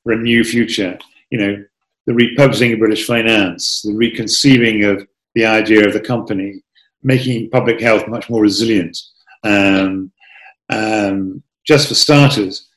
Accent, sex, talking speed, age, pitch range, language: British, male, 140 wpm, 50-69, 105-135 Hz, English